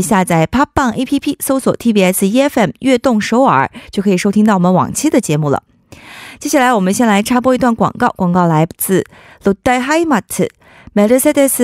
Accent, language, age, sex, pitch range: Chinese, Korean, 20-39, female, 190-260 Hz